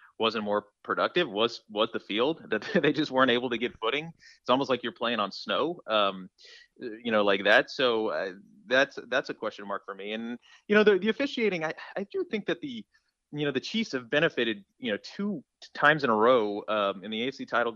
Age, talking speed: 30-49, 225 wpm